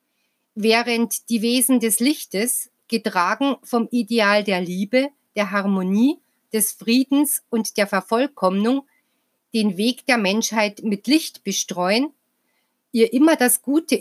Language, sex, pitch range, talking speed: German, female, 210-260 Hz, 120 wpm